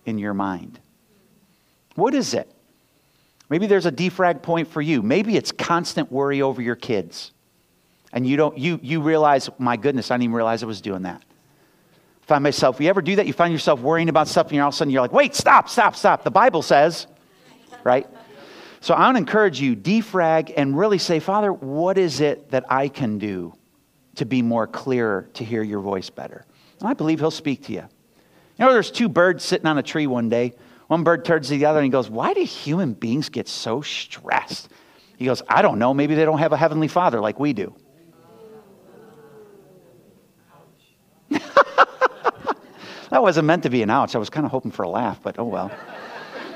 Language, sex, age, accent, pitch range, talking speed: English, male, 50-69, American, 125-175 Hz, 205 wpm